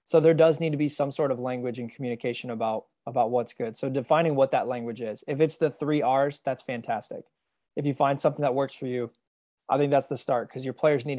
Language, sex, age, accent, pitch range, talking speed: English, male, 20-39, American, 125-155 Hz, 245 wpm